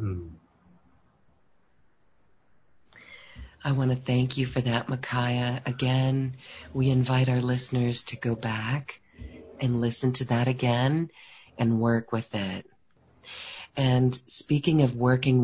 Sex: female